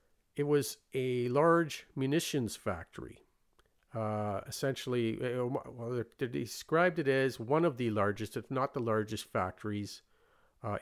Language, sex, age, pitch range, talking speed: English, male, 50-69, 105-130 Hz, 135 wpm